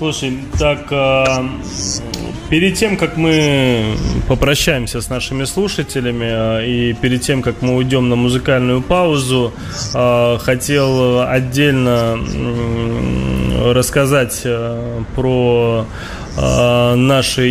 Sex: male